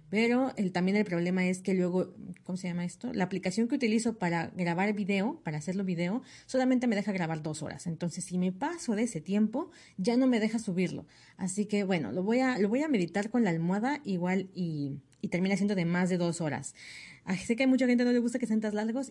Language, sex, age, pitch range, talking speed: Spanish, female, 30-49, 180-235 Hz, 230 wpm